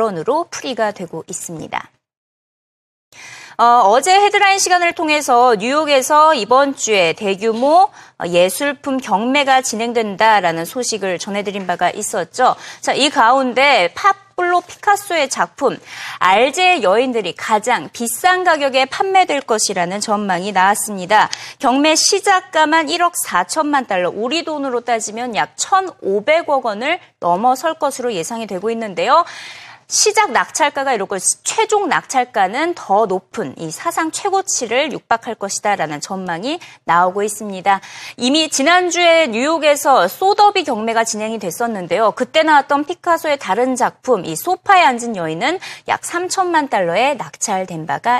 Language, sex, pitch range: Korean, female, 205-325 Hz